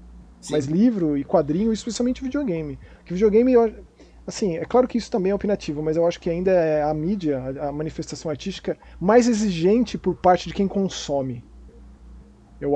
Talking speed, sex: 175 wpm, male